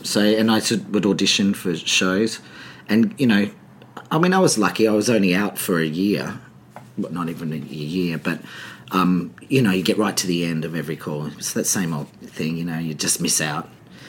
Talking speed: 215 wpm